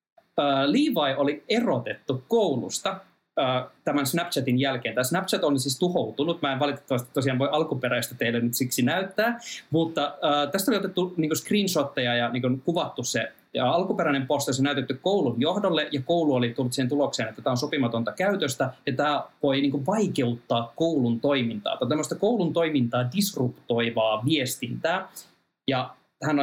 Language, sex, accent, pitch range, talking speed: Finnish, male, native, 130-175 Hz, 150 wpm